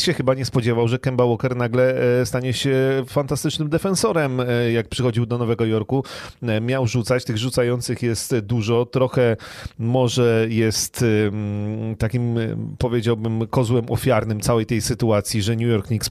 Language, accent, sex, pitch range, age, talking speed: Polish, native, male, 110-140 Hz, 30-49, 140 wpm